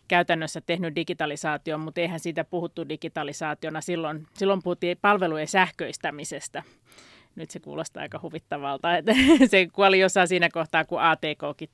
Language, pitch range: Finnish, 160-200 Hz